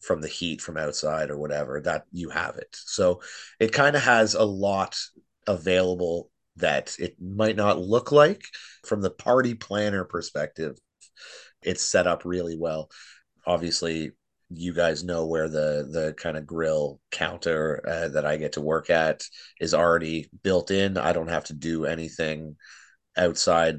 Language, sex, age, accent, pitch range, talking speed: English, male, 30-49, American, 80-115 Hz, 160 wpm